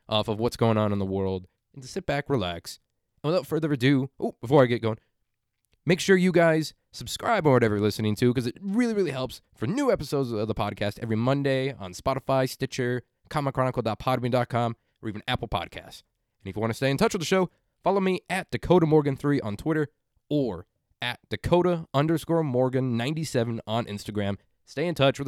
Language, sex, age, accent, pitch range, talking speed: English, male, 20-39, American, 110-155 Hz, 195 wpm